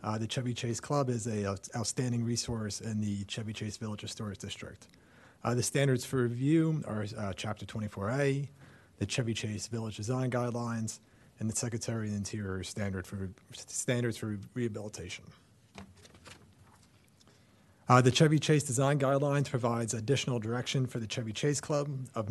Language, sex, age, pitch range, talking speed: English, male, 30-49, 105-130 Hz, 150 wpm